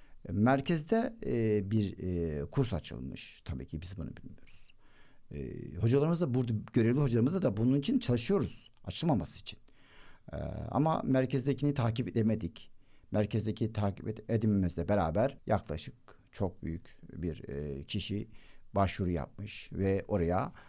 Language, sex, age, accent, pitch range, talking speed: Turkish, male, 60-79, native, 105-150 Hz, 125 wpm